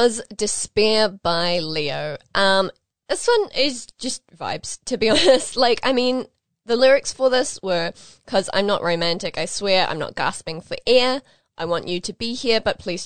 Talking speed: 180 wpm